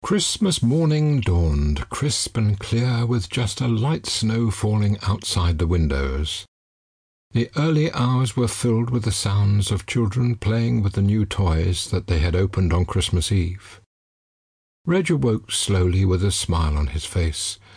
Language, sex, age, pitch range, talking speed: English, male, 60-79, 85-115 Hz, 155 wpm